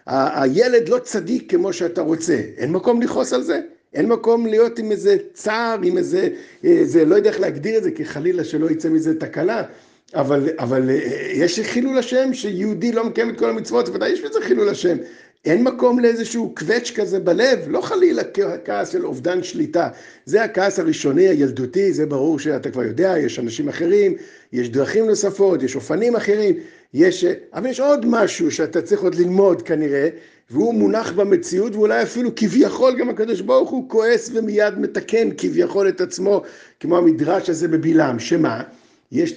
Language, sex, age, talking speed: Hebrew, male, 50-69, 170 wpm